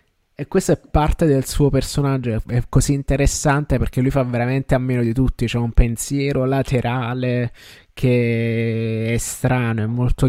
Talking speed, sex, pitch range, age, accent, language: 155 wpm, male, 115-135 Hz, 20-39, native, Italian